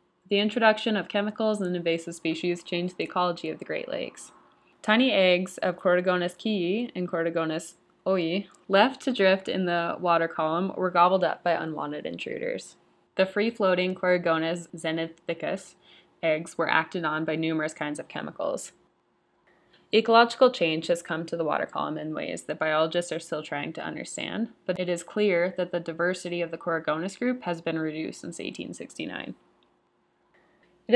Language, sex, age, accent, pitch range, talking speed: English, female, 20-39, American, 170-210 Hz, 160 wpm